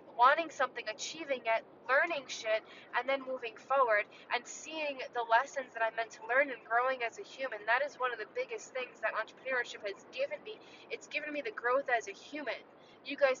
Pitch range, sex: 230-305 Hz, female